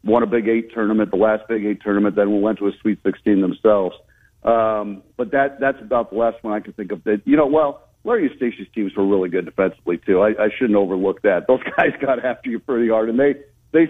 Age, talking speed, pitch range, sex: 50-69, 240 wpm, 100-115 Hz, male